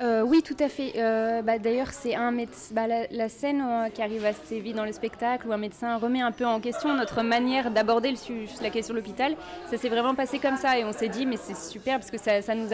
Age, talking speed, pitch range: 20-39, 270 wpm, 215-250 Hz